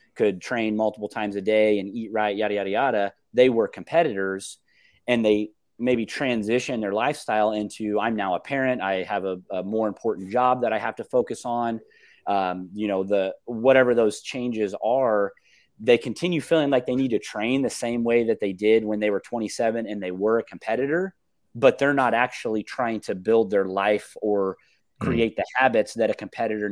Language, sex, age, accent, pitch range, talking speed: English, male, 30-49, American, 105-125 Hz, 195 wpm